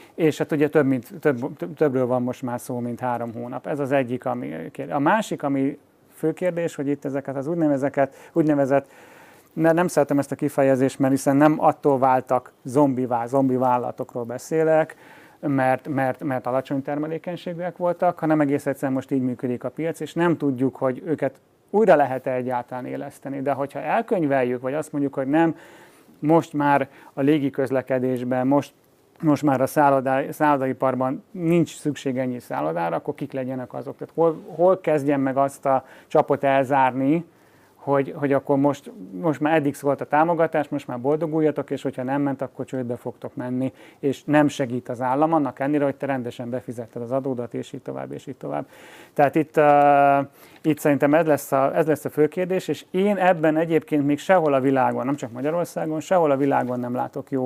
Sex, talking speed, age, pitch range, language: male, 180 wpm, 30-49, 130-155 Hz, Hungarian